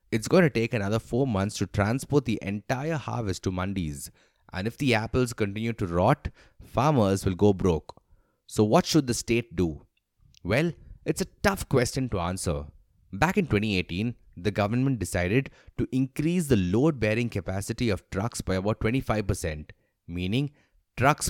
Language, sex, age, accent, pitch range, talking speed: English, male, 30-49, Indian, 100-135 Hz, 160 wpm